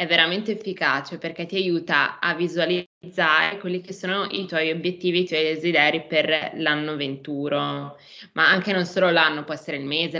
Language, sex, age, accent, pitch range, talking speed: Italian, female, 20-39, native, 155-195 Hz, 170 wpm